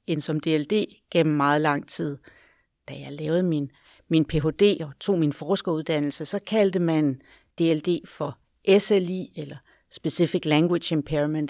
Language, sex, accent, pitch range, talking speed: Danish, female, native, 155-195 Hz, 140 wpm